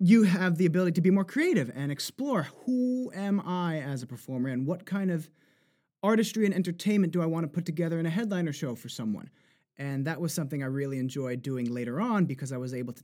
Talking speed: 230 wpm